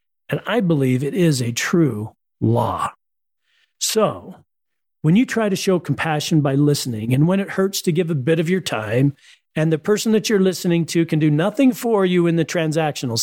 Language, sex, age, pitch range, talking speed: English, male, 50-69, 145-210 Hz, 195 wpm